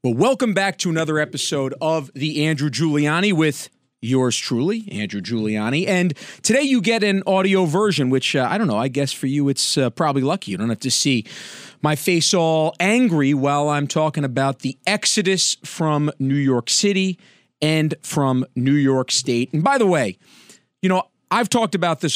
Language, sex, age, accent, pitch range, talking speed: English, male, 40-59, American, 135-185 Hz, 185 wpm